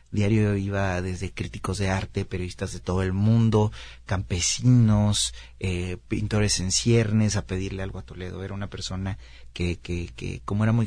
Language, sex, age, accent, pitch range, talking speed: Spanish, male, 30-49, Mexican, 95-110 Hz, 165 wpm